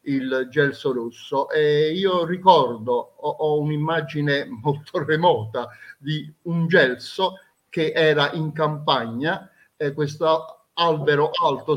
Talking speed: 110 wpm